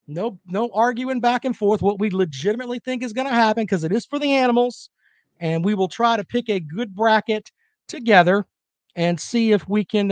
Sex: male